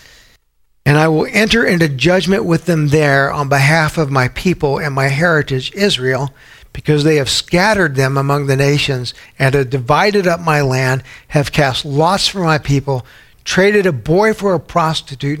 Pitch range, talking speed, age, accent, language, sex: 125-150 Hz, 170 wpm, 60-79, American, English, male